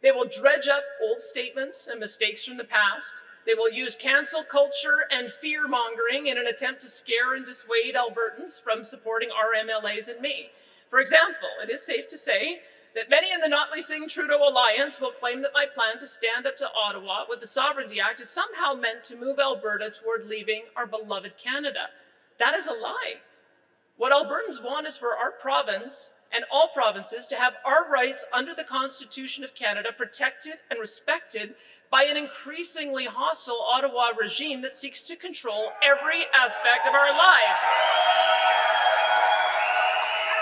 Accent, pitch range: American, 220-295 Hz